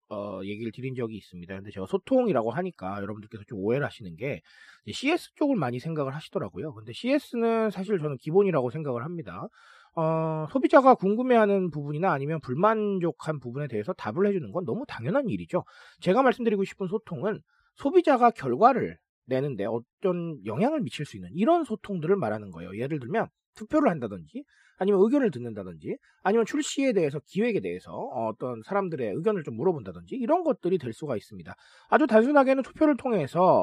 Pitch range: 145-245 Hz